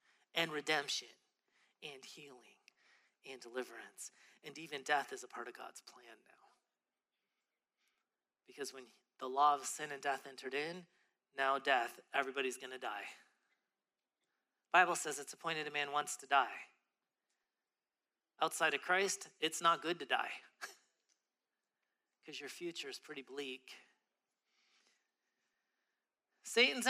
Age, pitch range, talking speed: 30-49, 140-220 Hz, 125 wpm